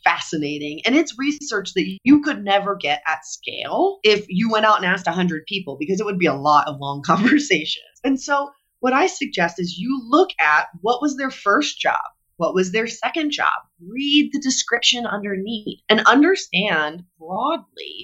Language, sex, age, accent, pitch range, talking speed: English, female, 30-49, American, 175-255 Hz, 180 wpm